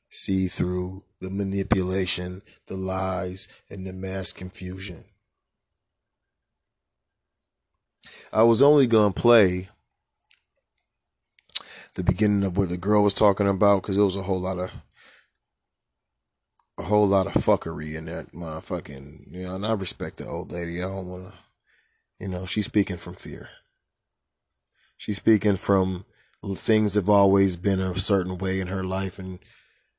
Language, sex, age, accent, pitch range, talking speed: English, male, 30-49, American, 95-105 Hz, 140 wpm